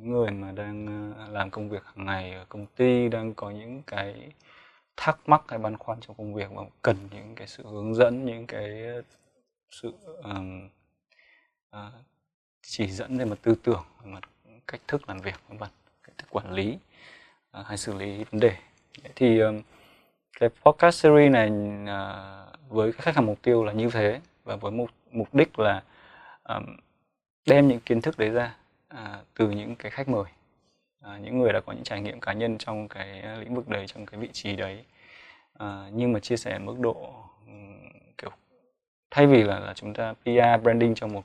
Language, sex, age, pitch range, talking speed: Vietnamese, male, 20-39, 100-120 Hz, 185 wpm